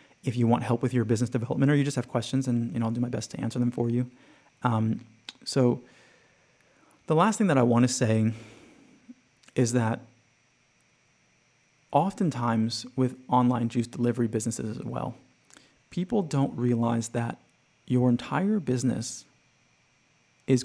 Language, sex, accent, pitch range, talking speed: English, male, American, 120-140 Hz, 155 wpm